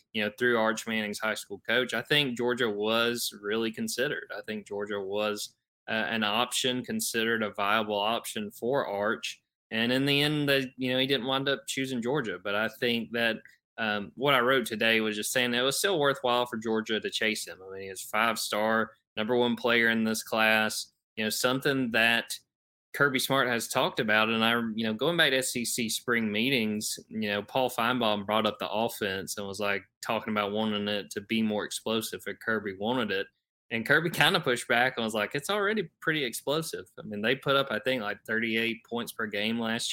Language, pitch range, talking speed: English, 110-125 Hz, 215 wpm